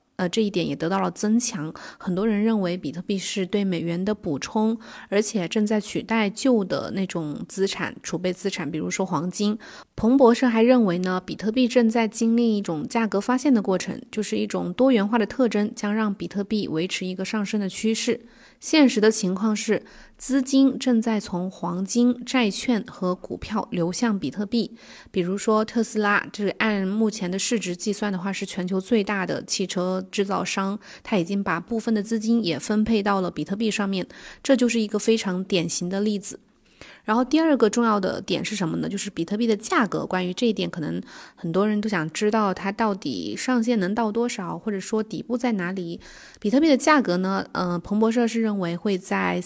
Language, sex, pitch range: Chinese, female, 185-225 Hz